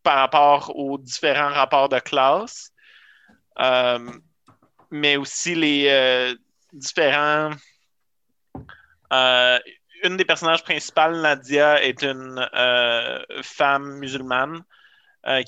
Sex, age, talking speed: male, 30-49, 95 wpm